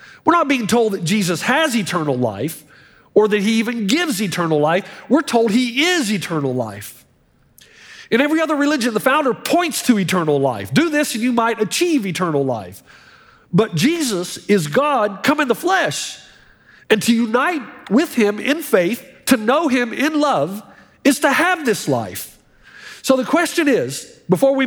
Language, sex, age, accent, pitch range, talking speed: English, male, 50-69, American, 190-280 Hz, 175 wpm